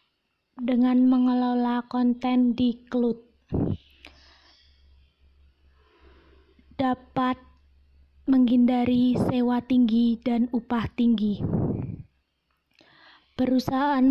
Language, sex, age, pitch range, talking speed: Indonesian, female, 20-39, 245-260 Hz, 55 wpm